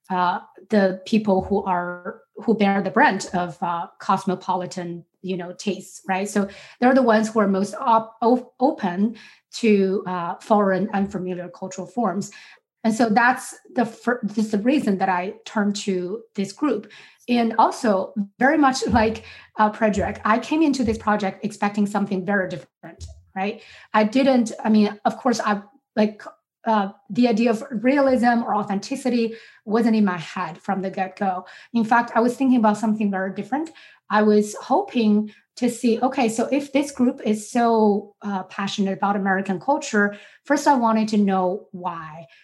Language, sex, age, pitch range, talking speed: English, female, 30-49, 190-235 Hz, 165 wpm